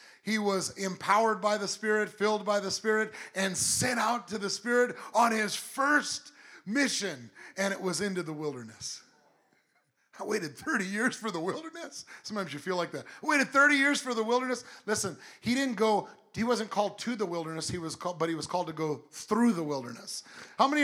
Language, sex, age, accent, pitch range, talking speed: English, male, 40-59, American, 175-220 Hz, 200 wpm